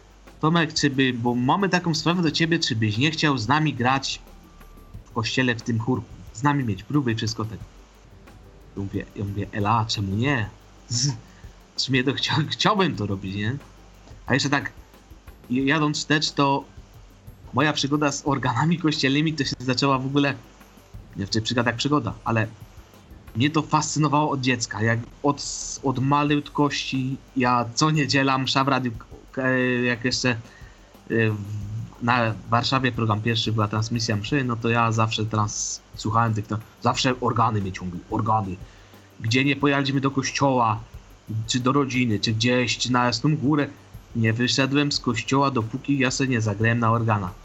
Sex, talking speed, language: male, 155 wpm, Polish